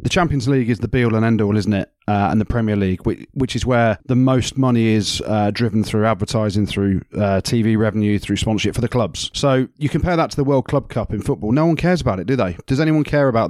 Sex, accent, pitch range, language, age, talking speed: male, British, 110-130 Hz, English, 30-49, 260 wpm